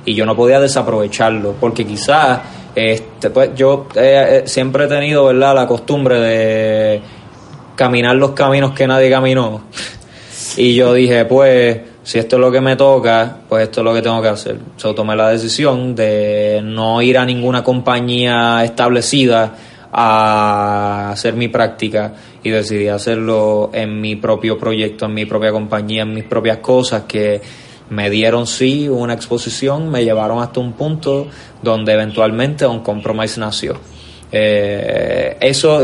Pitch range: 110-130 Hz